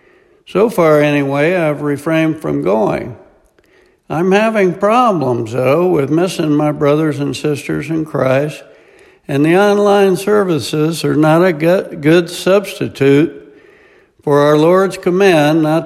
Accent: American